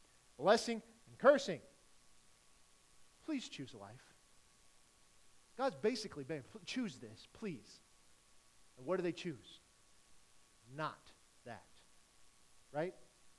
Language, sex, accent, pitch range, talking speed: English, male, American, 170-260 Hz, 95 wpm